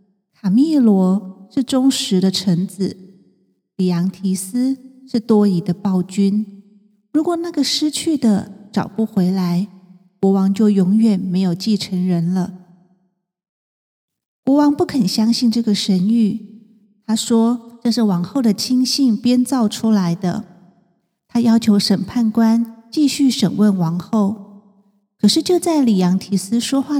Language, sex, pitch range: Chinese, female, 195-240 Hz